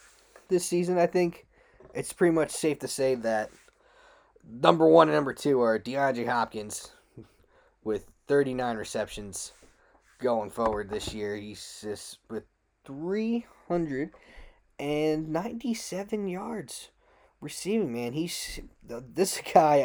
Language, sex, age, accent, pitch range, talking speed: English, male, 20-39, American, 115-180 Hz, 110 wpm